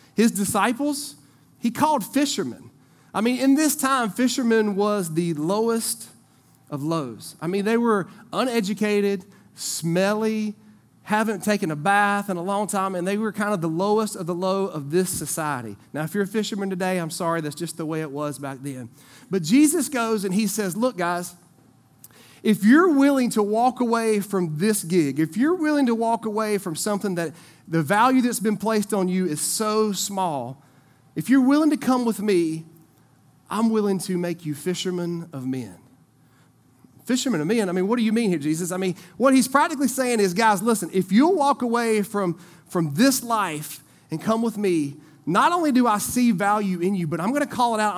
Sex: male